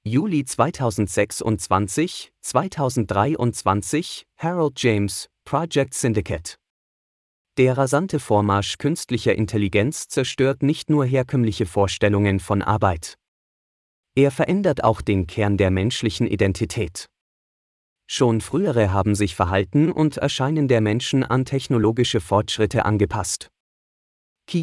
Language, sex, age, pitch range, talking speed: Vietnamese, male, 30-49, 100-130 Hz, 100 wpm